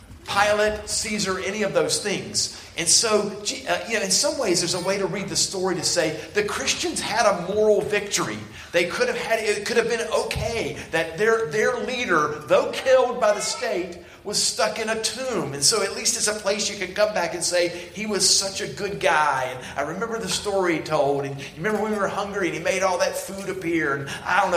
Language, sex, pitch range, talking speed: English, male, 145-205 Hz, 230 wpm